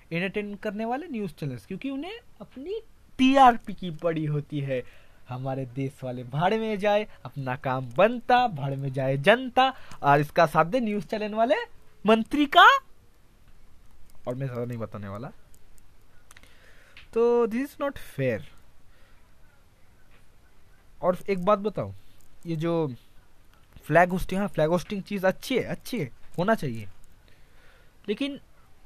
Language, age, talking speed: Hindi, 20-39, 125 wpm